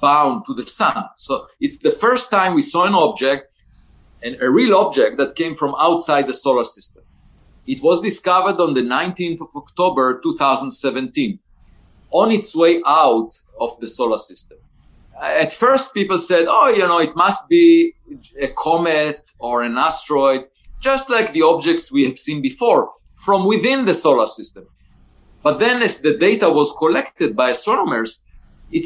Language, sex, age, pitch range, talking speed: English, male, 50-69, 140-235 Hz, 165 wpm